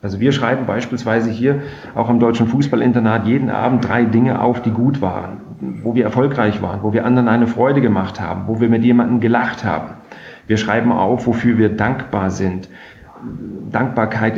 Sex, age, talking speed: male, 40-59, 175 wpm